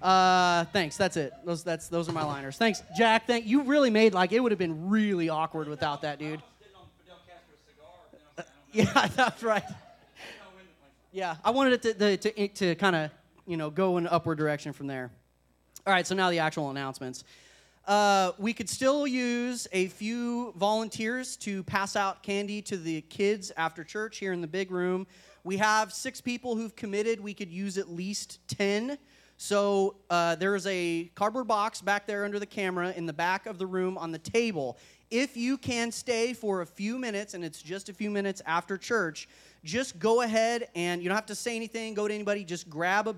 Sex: male